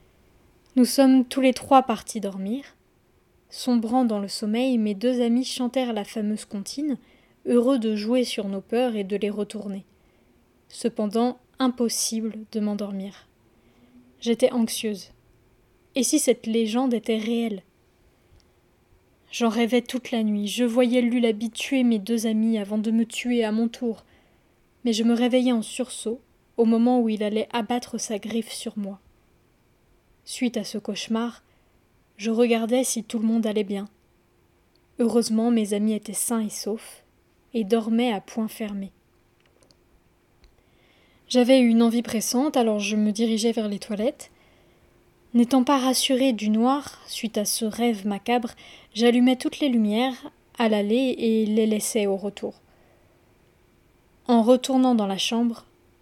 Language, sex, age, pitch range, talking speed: French, female, 20-39, 215-245 Hz, 145 wpm